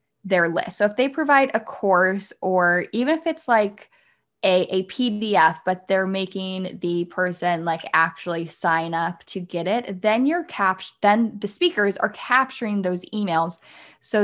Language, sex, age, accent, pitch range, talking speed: English, female, 10-29, American, 175-215 Hz, 165 wpm